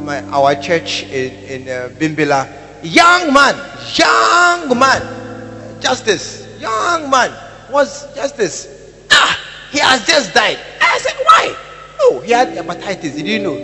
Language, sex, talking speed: English, male, 145 wpm